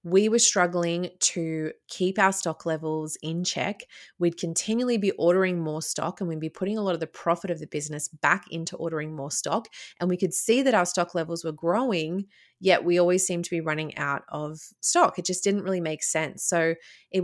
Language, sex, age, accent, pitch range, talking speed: English, female, 20-39, Australian, 155-180 Hz, 210 wpm